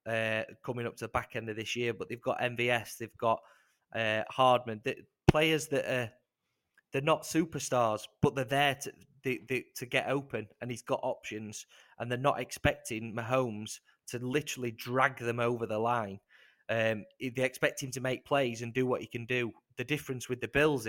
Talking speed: 190 wpm